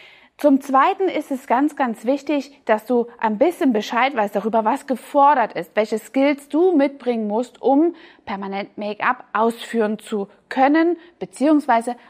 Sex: female